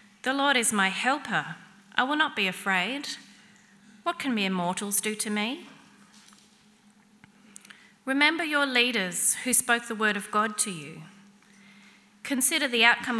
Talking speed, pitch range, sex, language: 140 wpm, 195-235 Hz, female, English